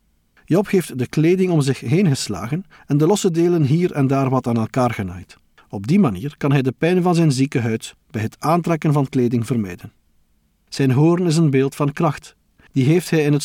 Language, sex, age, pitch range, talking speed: Dutch, male, 50-69, 125-170 Hz, 215 wpm